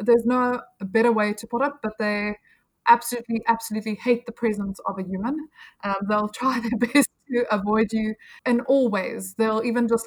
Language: English